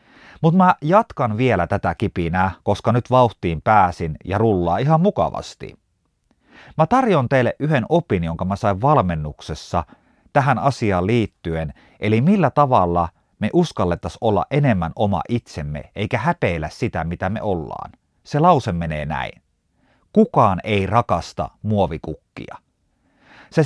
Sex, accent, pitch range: male, native, 95-145 Hz